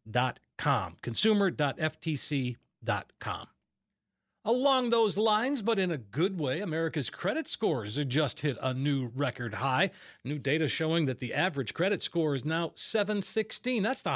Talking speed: 140 wpm